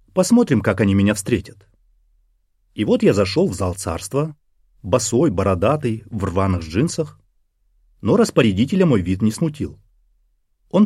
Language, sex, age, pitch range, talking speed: Russian, male, 30-49, 95-135 Hz, 135 wpm